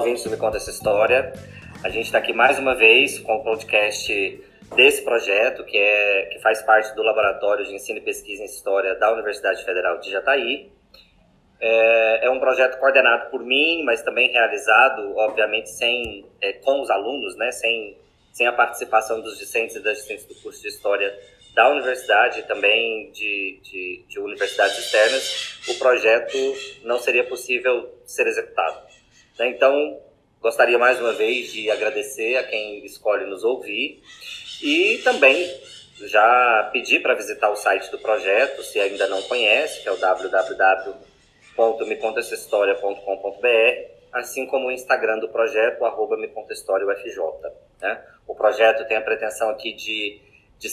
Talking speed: 155 wpm